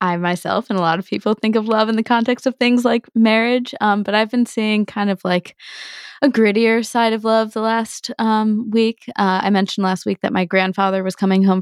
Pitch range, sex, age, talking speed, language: 175-220 Hz, female, 20-39, 230 wpm, English